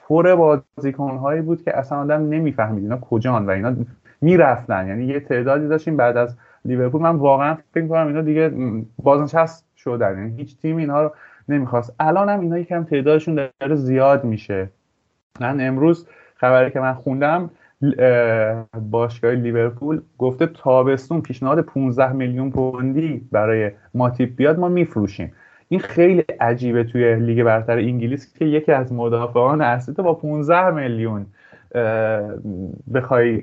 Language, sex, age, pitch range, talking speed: Persian, male, 30-49, 120-155 Hz, 140 wpm